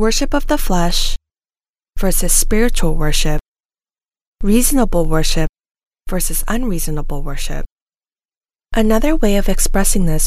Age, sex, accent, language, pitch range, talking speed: 10-29, female, American, English, 165-215 Hz, 100 wpm